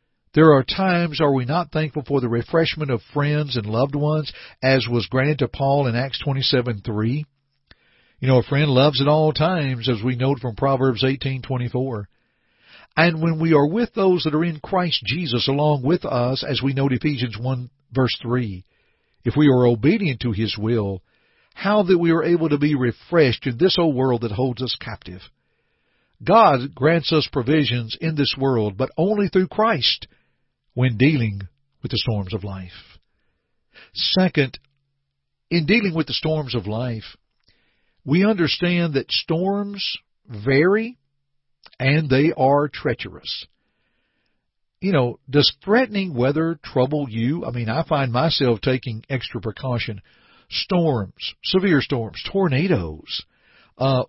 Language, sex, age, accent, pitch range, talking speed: English, male, 60-79, American, 120-160 Hz, 155 wpm